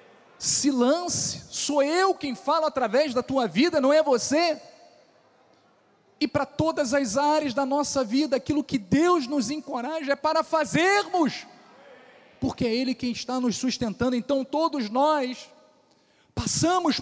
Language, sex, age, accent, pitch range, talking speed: Portuguese, male, 40-59, Brazilian, 245-300 Hz, 140 wpm